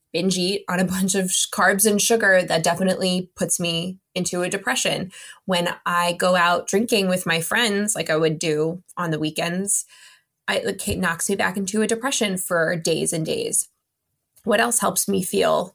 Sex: female